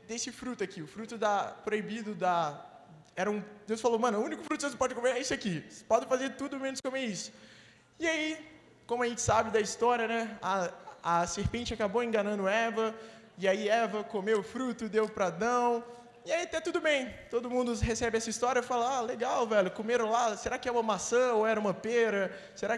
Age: 20-39